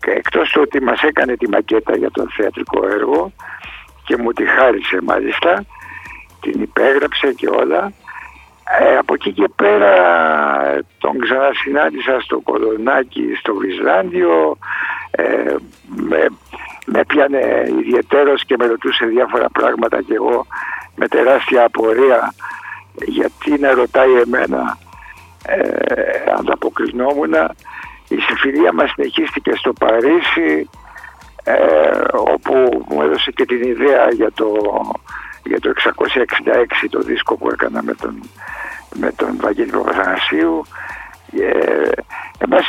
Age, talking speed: 60-79, 115 wpm